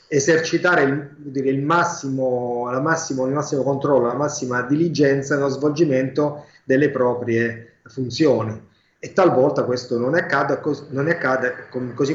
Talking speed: 110 wpm